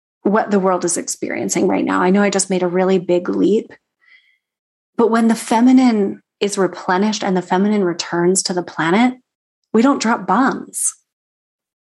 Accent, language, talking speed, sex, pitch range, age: American, English, 165 wpm, female, 190-235 Hz, 30-49